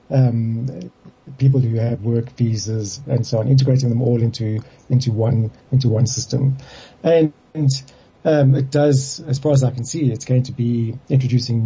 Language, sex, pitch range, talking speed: English, male, 115-135 Hz, 175 wpm